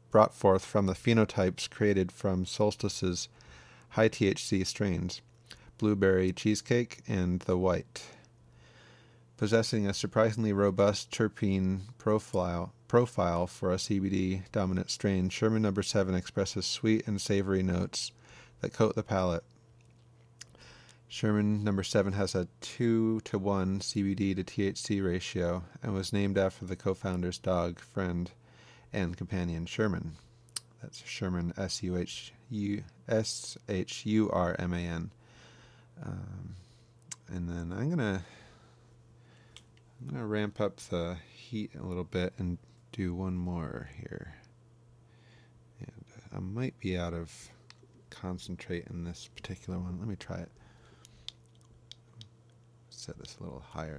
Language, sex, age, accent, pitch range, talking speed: English, male, 30-49, American, 95-115 Hz, 110 wpm